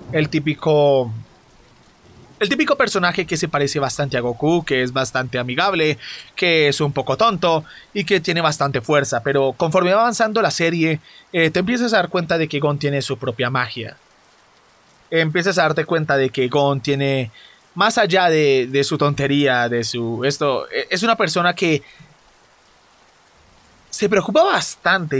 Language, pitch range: Spanish, 135-180 Hz